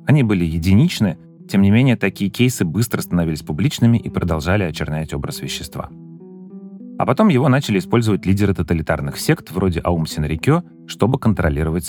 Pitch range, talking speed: 85-125 Hz, 145 wpm